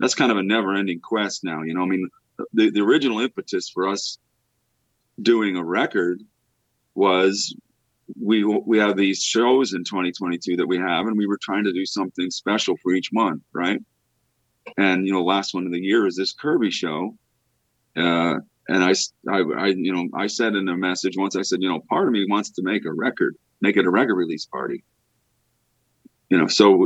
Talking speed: 200 wpm